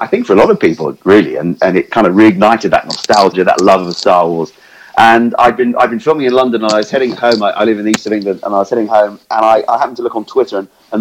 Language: English